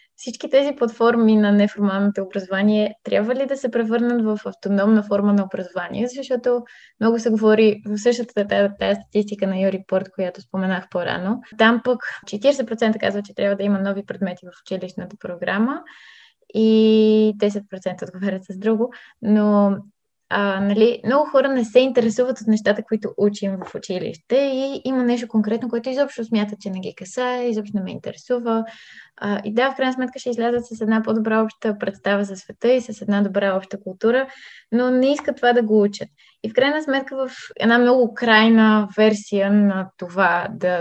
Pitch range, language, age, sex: 200-240 Hz, Bulgarian, 20-39, female